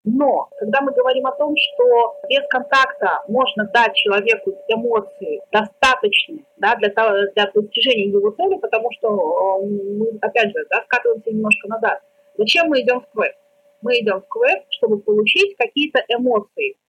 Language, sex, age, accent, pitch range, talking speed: Russian, female, 30-49, native, 215-290 Hz, 140 wpm